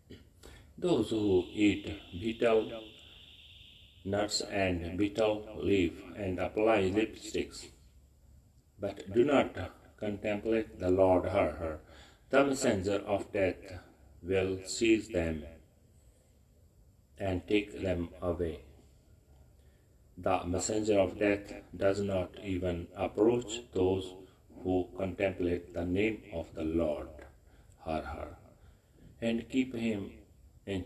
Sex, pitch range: male, 85-105 Hz